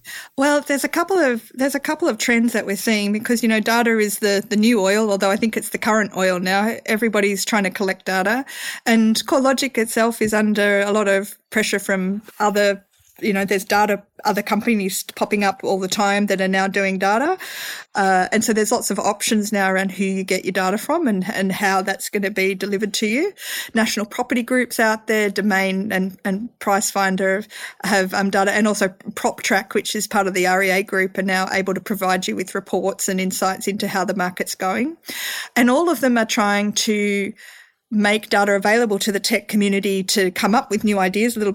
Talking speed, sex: 215 wpm, female